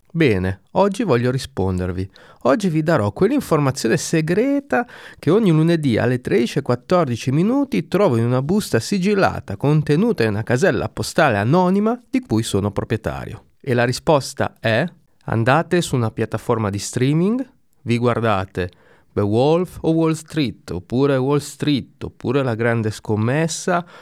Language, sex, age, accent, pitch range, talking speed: Italian, male, 30-49, native, 105-165 Hz, 135 wpm